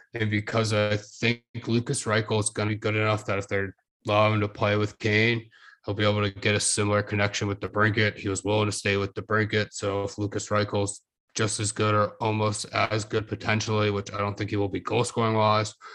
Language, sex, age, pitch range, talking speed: English, male, 20-39, 105-110 Hz, 230 wpm